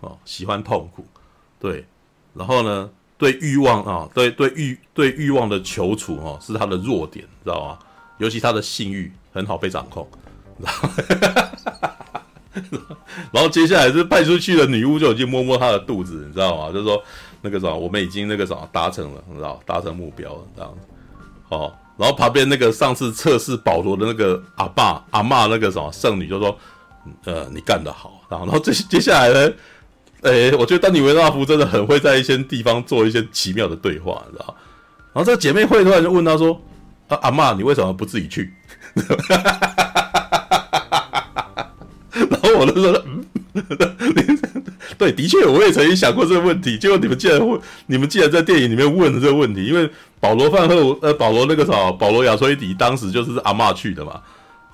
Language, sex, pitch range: Chinese, male, 100-165 Hz